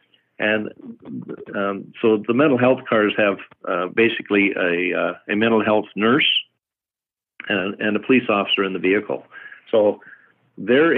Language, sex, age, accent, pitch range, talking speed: English, male, 60-79, American, 100-115 Hz, 140 wpm